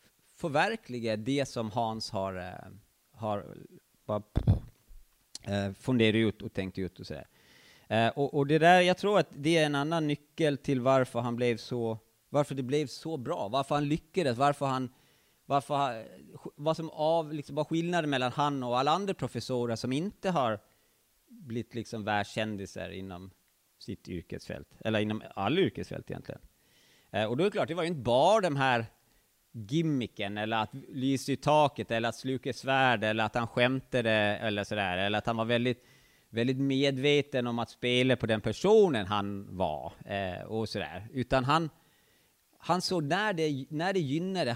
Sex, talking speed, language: male, 165 wpm, English